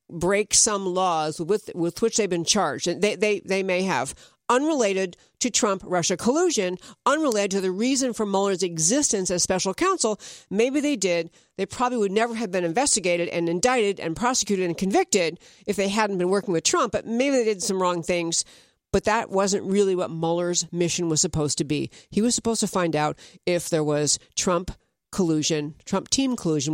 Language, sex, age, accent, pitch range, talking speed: English, female, 50-69, American, 175-235 Hz, 190 wpm